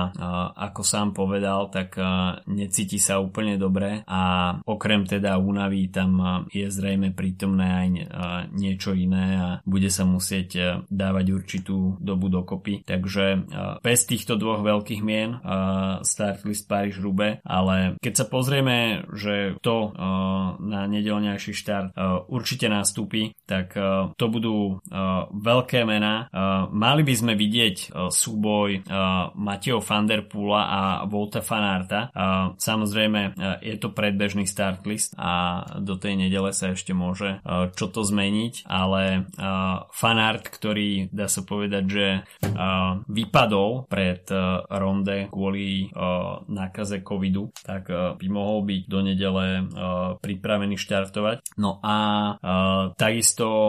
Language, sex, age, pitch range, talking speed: Slovak, male, 20-39, 95-105 Hz, 115 wpm